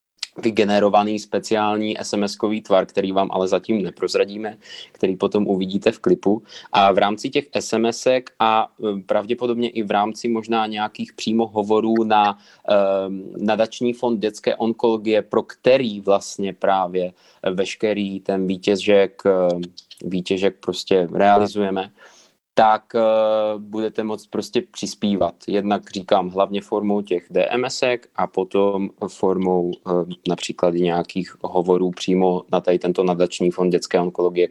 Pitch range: 100-115 Hz